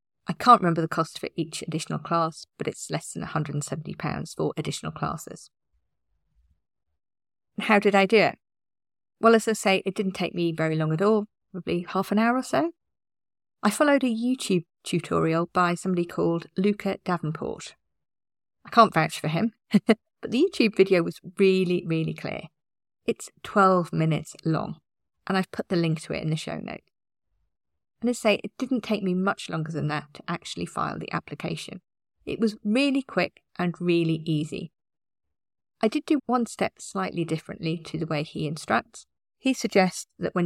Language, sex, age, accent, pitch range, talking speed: English, female, 40-59, British, 160-210 Hz, 175 wpm